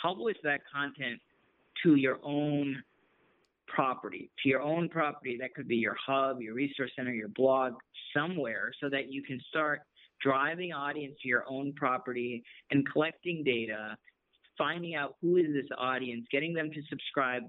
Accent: American